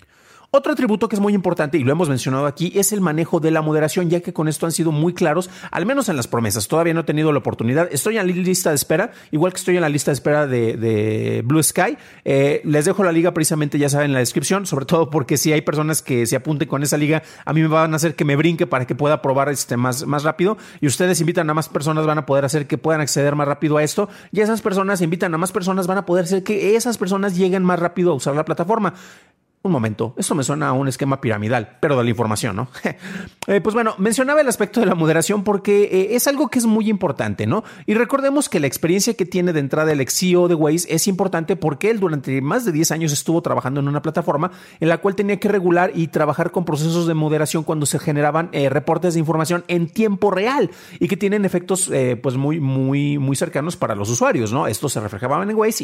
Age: 40-59